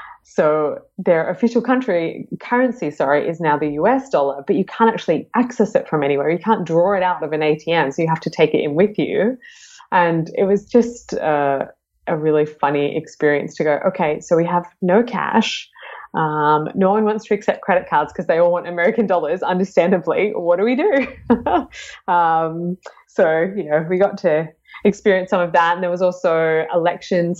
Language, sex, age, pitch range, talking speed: English, female, 20-39, 155-200 Hz, 195 wpm